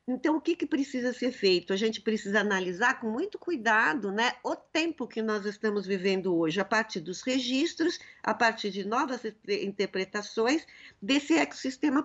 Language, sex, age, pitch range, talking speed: Portuguese, female, 50-69, 195-265 Hz, 165 wpm